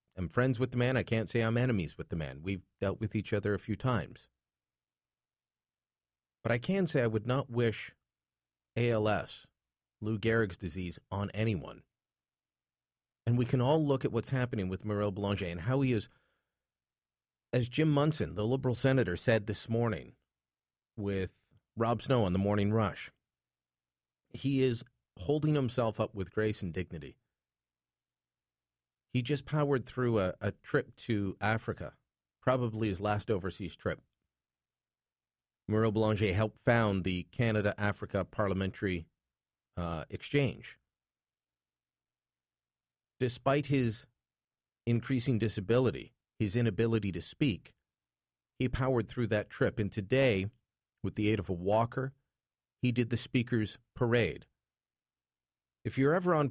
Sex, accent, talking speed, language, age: male, American, 135 wpm, English, 40-59